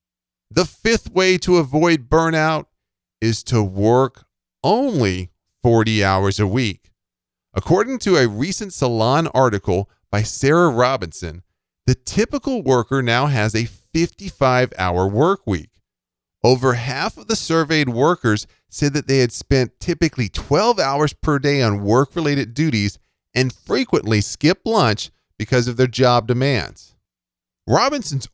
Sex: male